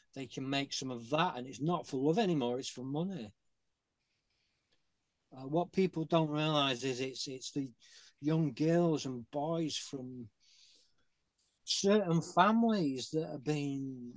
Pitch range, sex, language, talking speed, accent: 115-140 Hz, male, English, 145 wpm, British